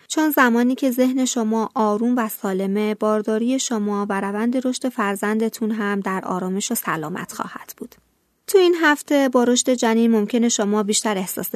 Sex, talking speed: female, 155 wpm